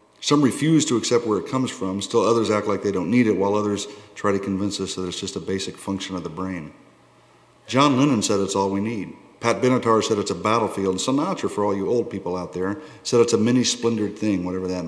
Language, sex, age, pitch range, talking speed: English, male, 50-69, 95-115 Hz, 240 wpm